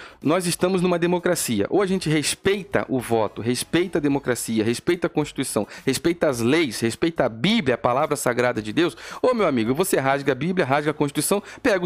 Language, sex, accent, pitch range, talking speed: Portuguese, male, Brazilian, 130-180 Hz, 190 wpm